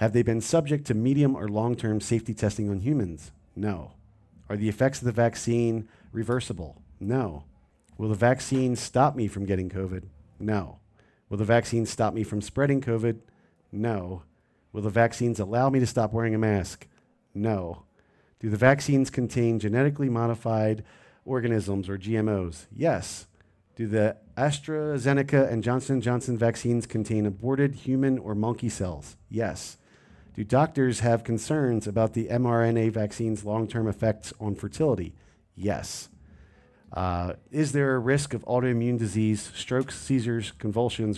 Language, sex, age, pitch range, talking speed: English, male, 40-59, 100-125 Hz, 145 wpm